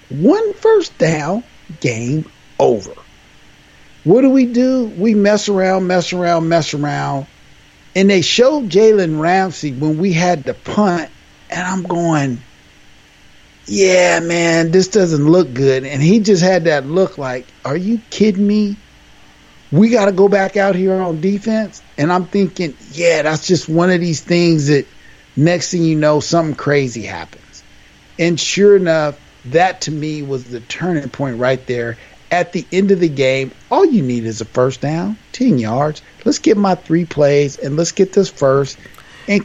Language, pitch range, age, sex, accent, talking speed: English, 140-195 Hz, 50-69, male, American, 170 wpm